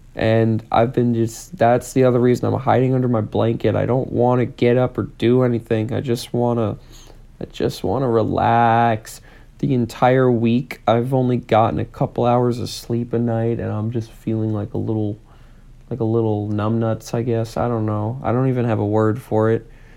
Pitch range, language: 115-145 Hz, English